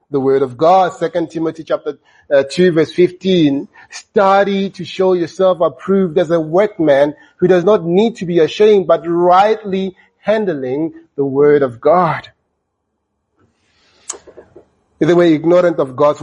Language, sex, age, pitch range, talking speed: English, male, 30-49, 140-185 Hz, 135 wpm